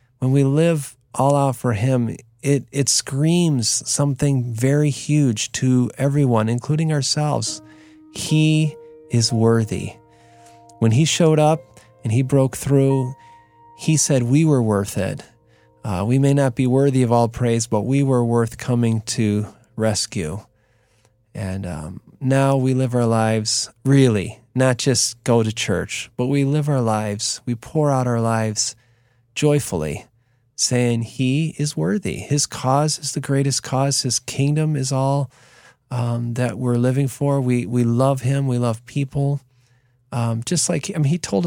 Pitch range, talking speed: 115-135 Hz, 155 wpm